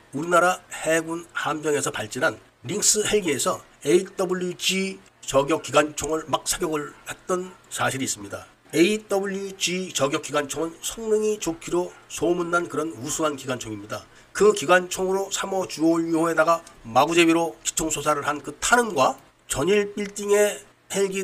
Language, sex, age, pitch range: Korean, male, 40-59, 150-195 Hz